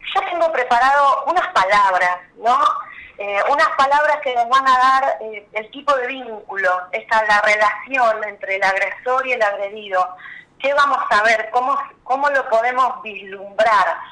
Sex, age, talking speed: female, 30-49, 155 wpm